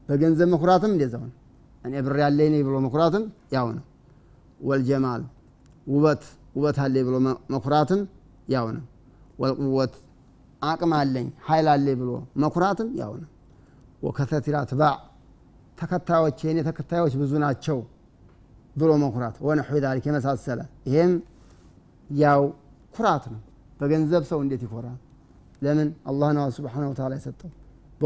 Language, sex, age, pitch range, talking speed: Amharic, male, 30-49, 130-150 Hz, 60 wpm